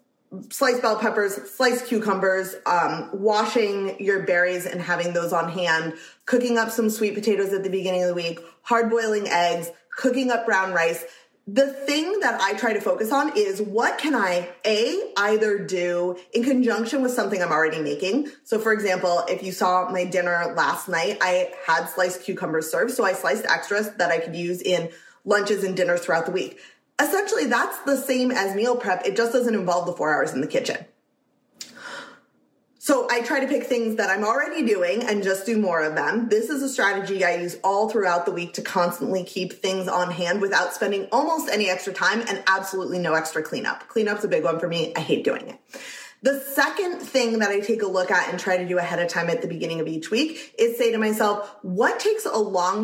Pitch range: 180-230 Hz